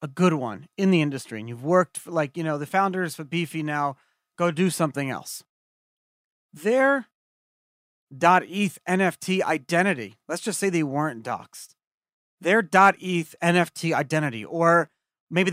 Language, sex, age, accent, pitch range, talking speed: English, male, 30-49, American, 145-190 Hz, 155 wpm